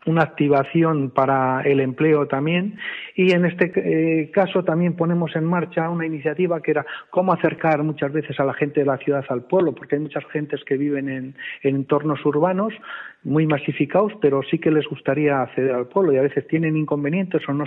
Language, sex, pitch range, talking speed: Spanish, male, 140-165 Hz, 195 wpm